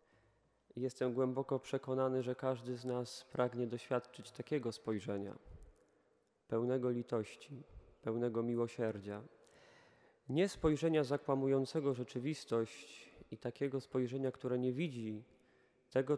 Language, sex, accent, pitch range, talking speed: Polish, male, native, 125-145 Hz, 95 wpm